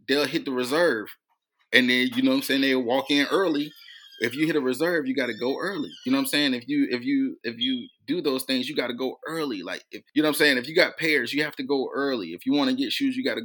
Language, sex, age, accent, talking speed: English, male, 20-39, American, 315 wpm